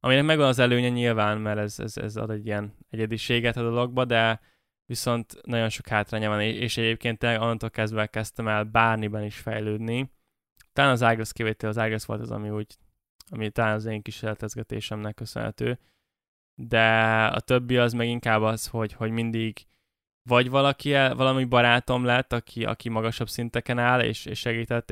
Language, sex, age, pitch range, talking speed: Hungarian, male, 10-29, 110-120 Hz, 165 wpm